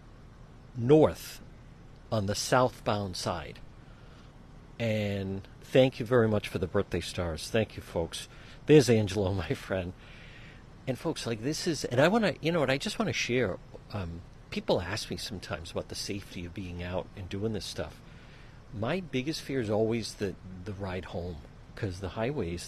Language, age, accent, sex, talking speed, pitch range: English, 50-69, American, male, 170 wpm, 100-130 Hz